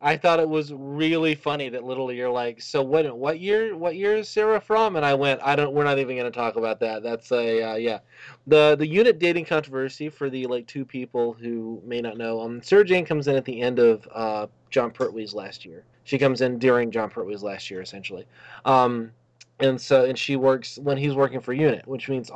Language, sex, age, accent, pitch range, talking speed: English, male, 20-39, American, 115-140 Hz, 230 wpm